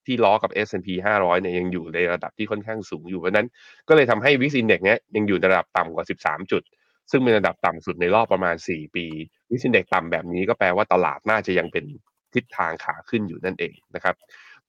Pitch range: 95-115 Hz